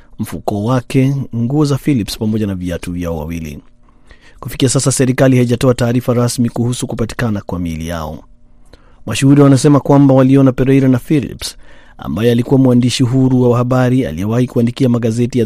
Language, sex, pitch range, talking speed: Swahili, male, 110-135 Hz, 140 wpm